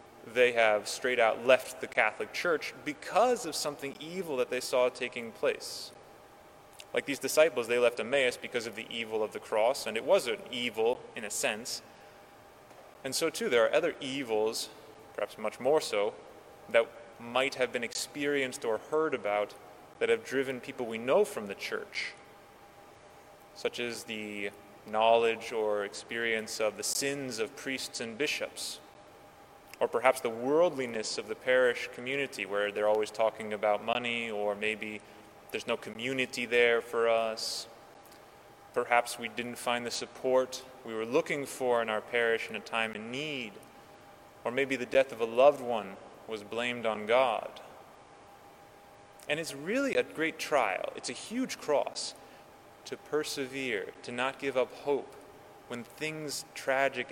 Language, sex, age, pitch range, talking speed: English, male, 20-39, 115-145 Hz, 160 wpm